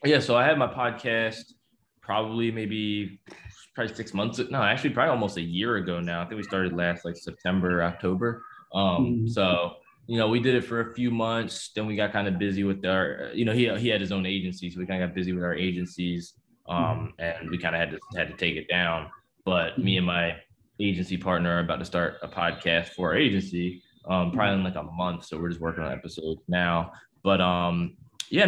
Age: 20-39